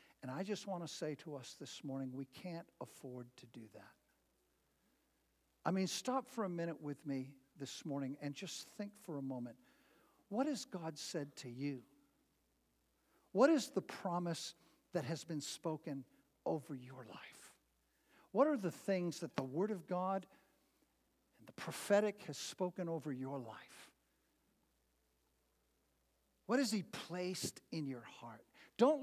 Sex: male